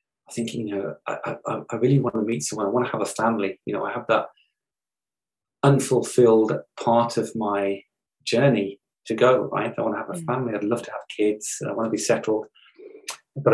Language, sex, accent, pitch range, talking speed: English, male, British, 100-120 Hz, 210 wpm